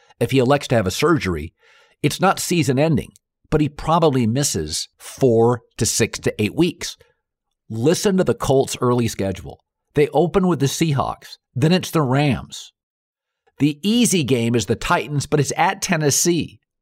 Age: 50-69